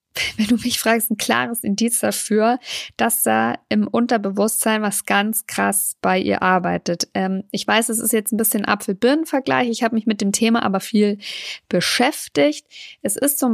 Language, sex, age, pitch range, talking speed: German, female, 50-69, 200-245 Hz, 175 wpm